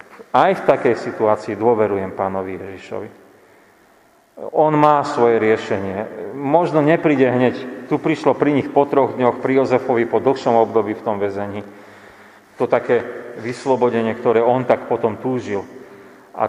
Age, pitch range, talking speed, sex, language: 40-59, 115-140 Hz, 140 wpm, male, Slovak